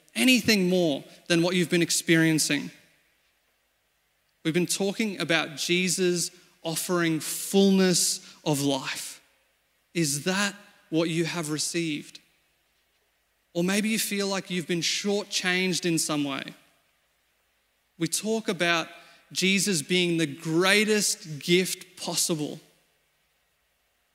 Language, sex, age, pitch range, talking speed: English, male, 30-49, 160-185 Hz, 105 wpm